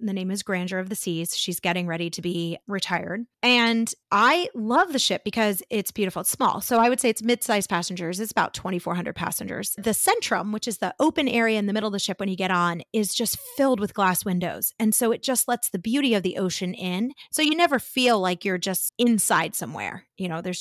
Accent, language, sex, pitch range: American, English, female, 185-230 Hz